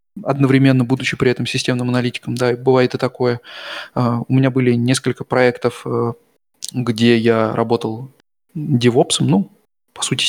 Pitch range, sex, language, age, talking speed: 120-140 Hz, male, Russian, 20-39, 130 wpm